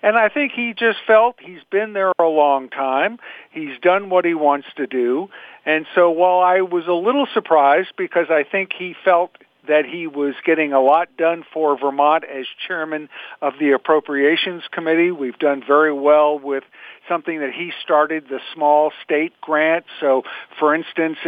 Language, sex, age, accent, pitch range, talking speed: English, male, 50-69, American, 145-180 Hz, 180 wpm